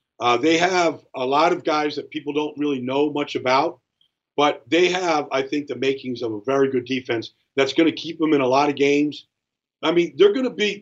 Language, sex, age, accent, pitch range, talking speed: English, male, 50-69, American, 150-230 Hz, 240 wpm